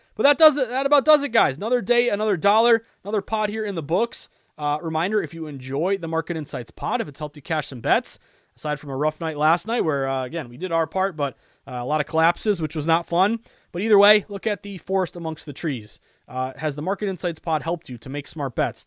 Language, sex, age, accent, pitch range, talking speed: English, male, 30-49, American, 140-195 Hz, 260 wpm